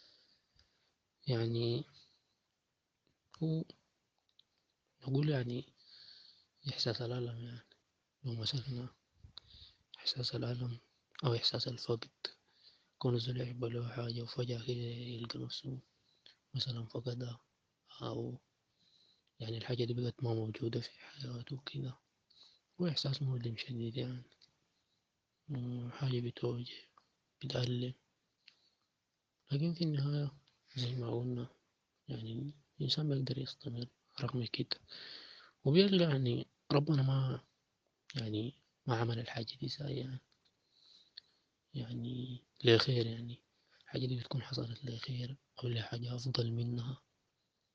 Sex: male